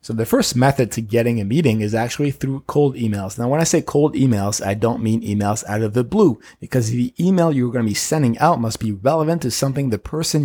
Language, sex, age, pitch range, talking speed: English, male, 30-49, 110-140 Hz, 245 wpm